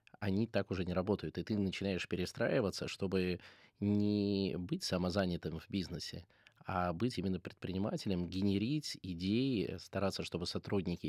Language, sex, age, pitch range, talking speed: Russian, male, 20-39, 90-105 Hz, 130 wpm